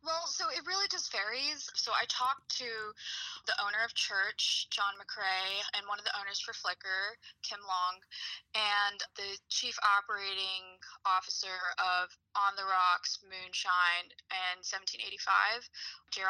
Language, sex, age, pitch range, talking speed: English, female, 20-39, 185-230 Hz, 135 wpm